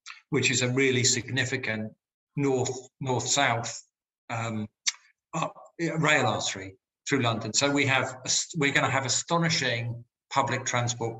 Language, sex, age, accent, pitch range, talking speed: English, male, 50-69, British, 115-140 Hz, 125 wpm